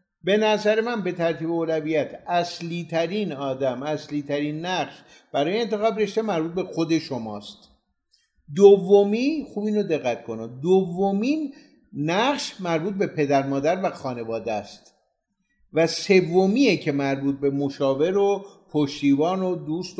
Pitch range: 155-215 Hz